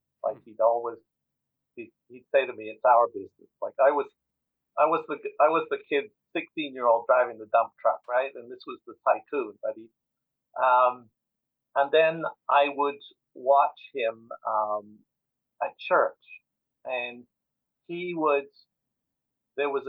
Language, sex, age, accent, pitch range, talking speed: English, male, 50-69, American, 125-170 Hz, 145 wpm